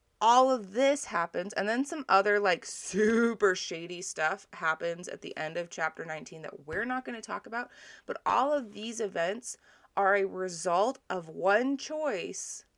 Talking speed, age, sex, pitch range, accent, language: 175 wpm, 20-39, female, 170-215 Hz, American, English